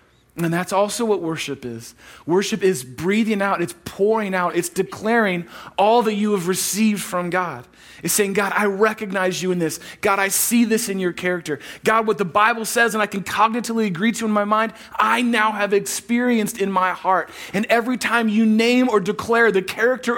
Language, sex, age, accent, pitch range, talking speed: English, male, 40-59, American, 155-220 Hz, 200 wpm